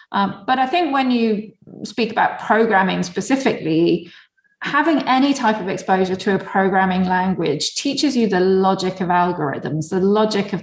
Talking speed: 160 wpm